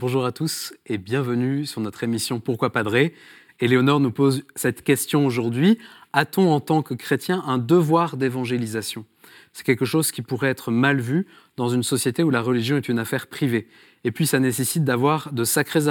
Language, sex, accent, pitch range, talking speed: French, male, French, 120-150 Hz, 185 wpm